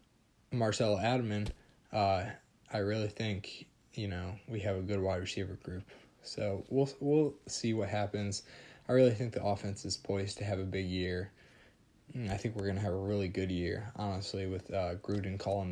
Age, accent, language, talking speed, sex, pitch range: 20-39, American, English, 180 wpm, male, 95-110 Hz